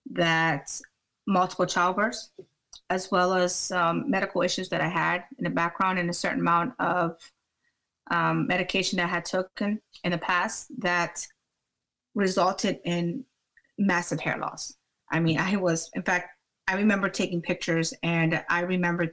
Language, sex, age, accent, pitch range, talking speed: English, female, 30-49, American, 170-210 Hz, 150 wpm